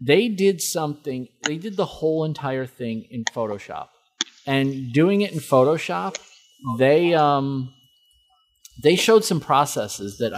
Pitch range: 120-155 Hz